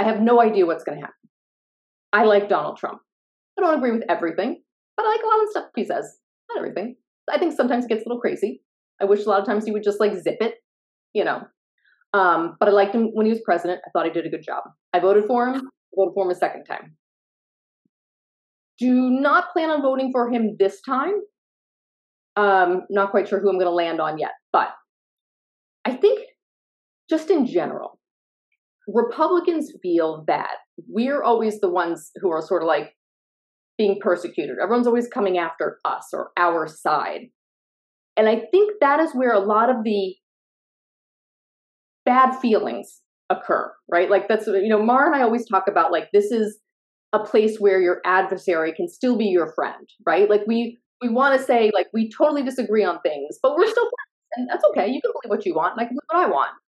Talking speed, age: 200 wpm, 30-49